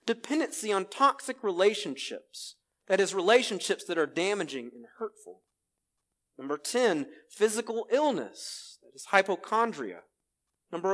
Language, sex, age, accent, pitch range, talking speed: English, male, 40-59, American, 180-250 Hz, 110 wpm